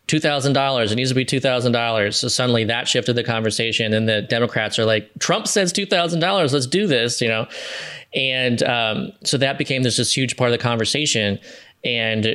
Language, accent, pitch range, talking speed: English, American, 110-130 Hz, 185 wpm